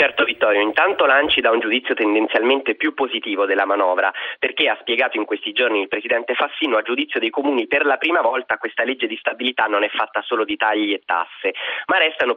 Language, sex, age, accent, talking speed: Italian, male, 30-49, native, 210 wpm